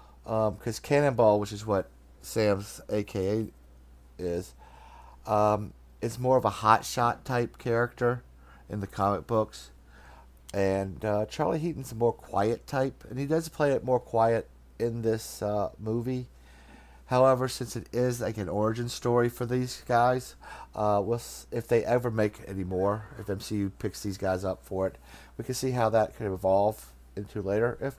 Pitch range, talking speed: 85-120 Hz, 165 wpm